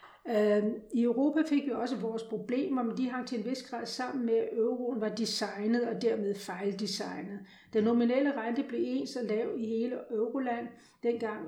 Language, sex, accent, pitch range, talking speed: Danish, female, native, 205-235 Hz, 180 wpm